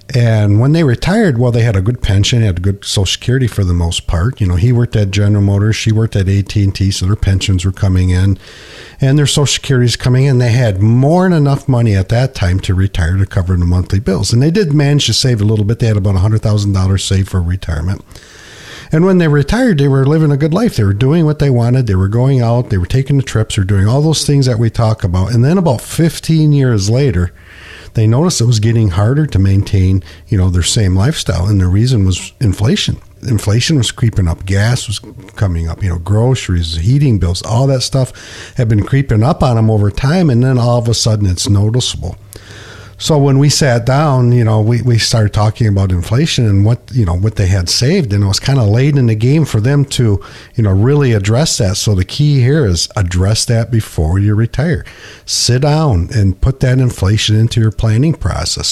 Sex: male